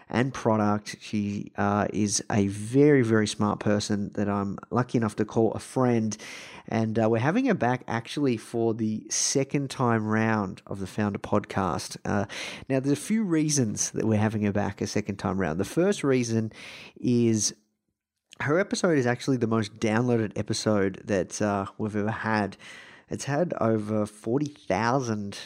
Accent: Australian